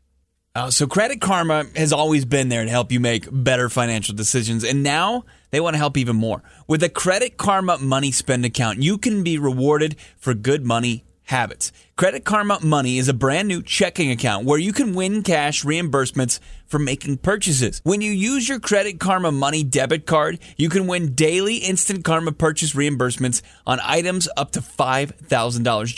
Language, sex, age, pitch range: English, male, 30-49, 130-180 Hz